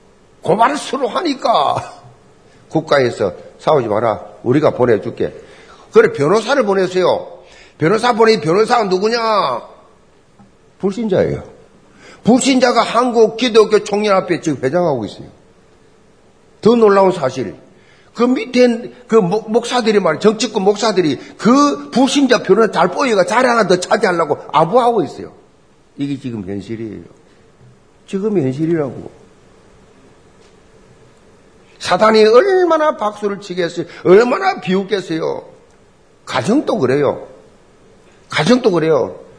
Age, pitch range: 50-69, 170-255 Hz